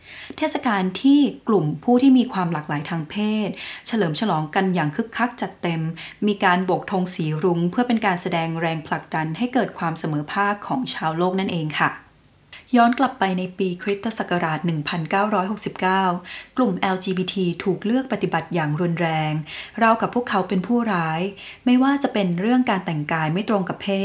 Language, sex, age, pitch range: Thai, female, 20-39, 170-215 Hz